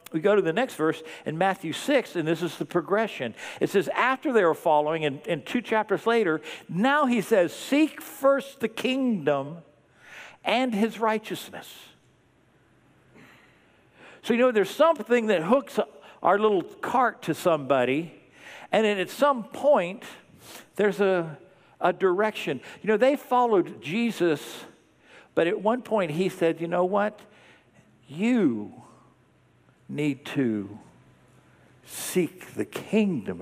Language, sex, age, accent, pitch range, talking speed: English, male, 50-69, American, 155-230 Hz, 135 wpm